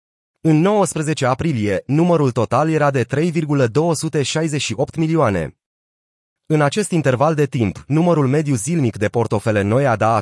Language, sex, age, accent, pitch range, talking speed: Romanian, male, 30-49, native, 120-155 Hz, 125 wpm